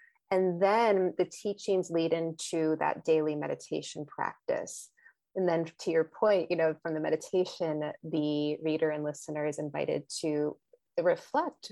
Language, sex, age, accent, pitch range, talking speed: English, female, 30-49, American, 160-190 Hz, 145 wpm